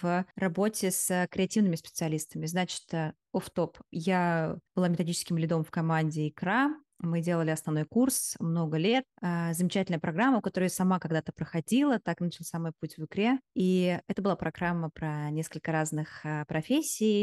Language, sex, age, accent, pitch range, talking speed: Russian, female, 20-39, native, 170-215 Hz, 145 wpm